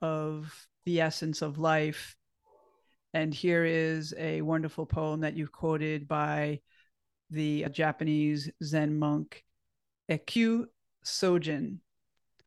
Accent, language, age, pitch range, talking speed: American, English, 30-49, 155-175 Hz, 100 wpm